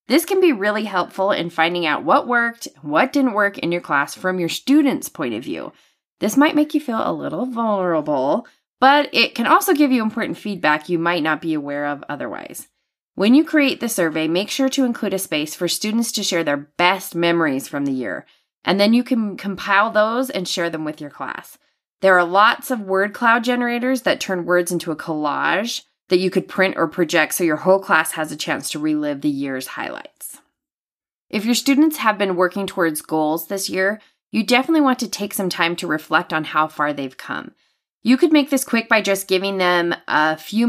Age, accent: 20-39, American